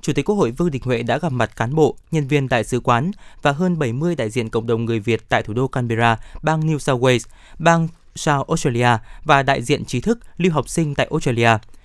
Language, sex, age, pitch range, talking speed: Vietnamese, male, 20-39, 120-165 Hz, 240 wpm